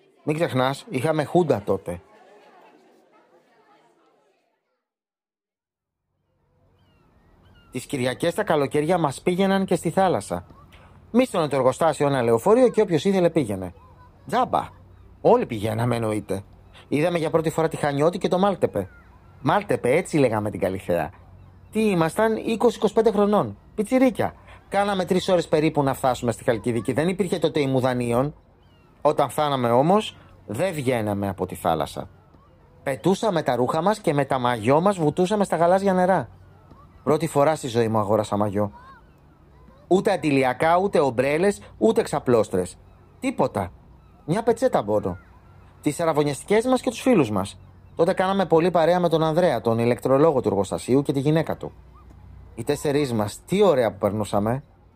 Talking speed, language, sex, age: 135 wpm, Greek, male, 30-49